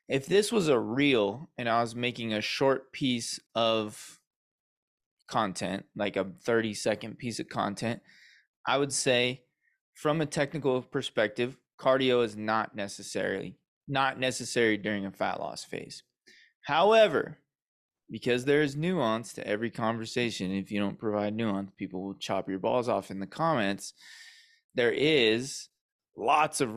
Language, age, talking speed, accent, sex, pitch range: English, 20-39, 145 wpm, American, male, 105-145 Hz